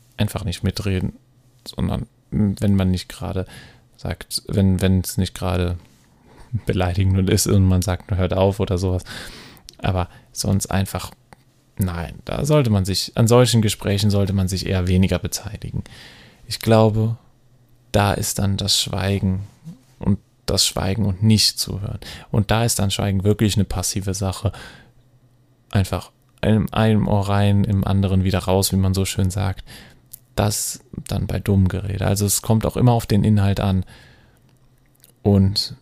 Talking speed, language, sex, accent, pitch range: 150 wpm, German, male, German, 95-120 Hz